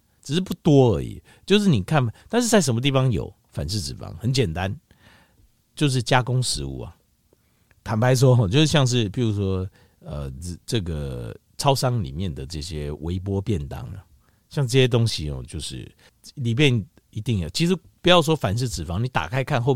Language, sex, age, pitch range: Chinese, male, 50-69, 100-145 Hz